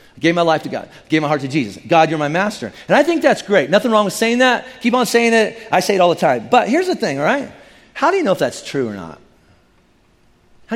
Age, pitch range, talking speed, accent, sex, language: 40-59, 170-230 Hz, 280 wpm, American, male, English